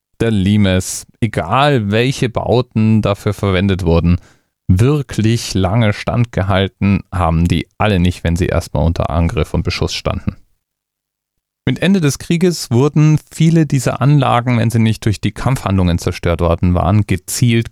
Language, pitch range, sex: German, 90-120 Hz, male